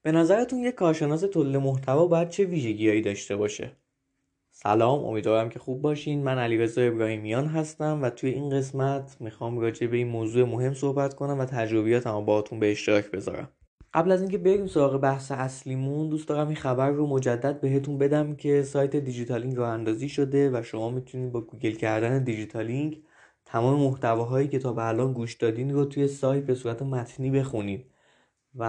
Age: 20-39